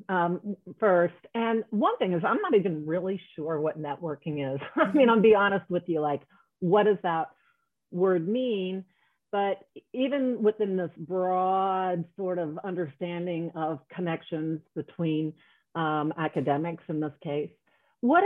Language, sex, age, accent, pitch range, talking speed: English, female, 40-59, American, 165-200 Hz, 145 wpm